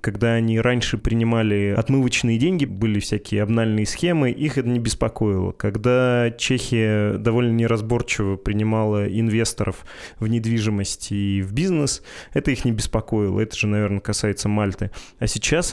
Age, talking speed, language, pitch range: 20-39, 135 wpm, Russian, 105-120 Hz